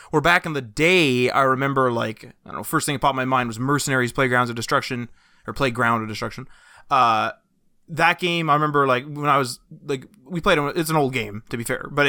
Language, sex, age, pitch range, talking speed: English, male, 20-39, 130-165 Hz, 240 wpm